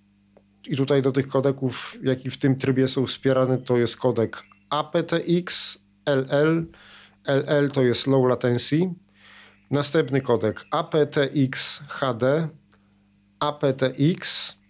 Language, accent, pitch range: Polish, native, 120-150 Hz